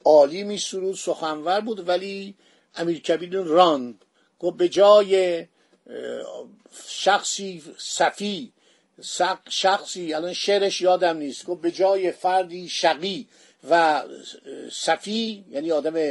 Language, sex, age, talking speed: Persian, male, 50-69, 100 wpm